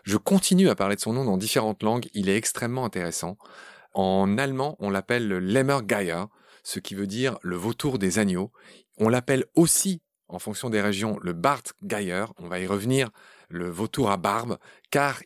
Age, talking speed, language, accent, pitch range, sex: 30-49, 180 wpm, French, French, 100-135 Hz, male